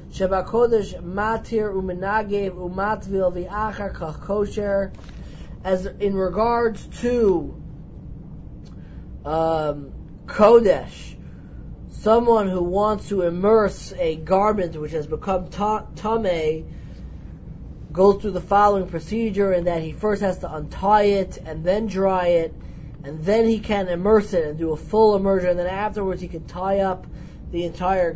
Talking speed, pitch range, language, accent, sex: 130 wpm, 180-215 Hz, English, American, male